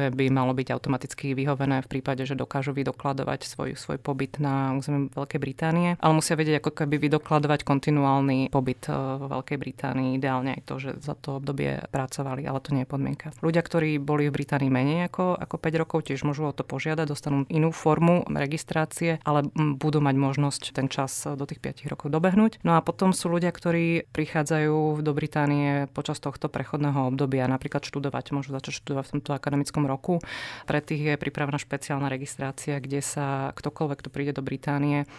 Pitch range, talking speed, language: 140-155 Hz, 180 wpm, Slovak